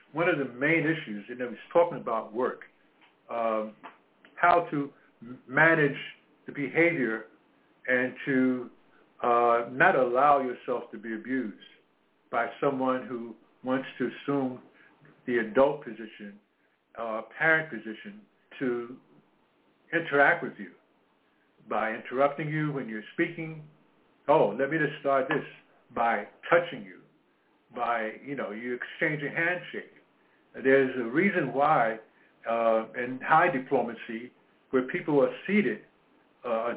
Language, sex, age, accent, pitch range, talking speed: English, male, 60-79, American, 120-150 Hz, 125 wpm